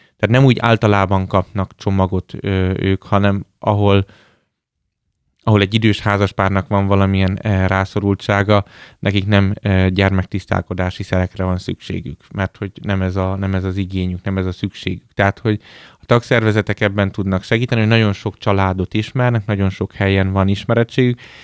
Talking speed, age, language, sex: 145 wpm, 20-39, Hungarian, male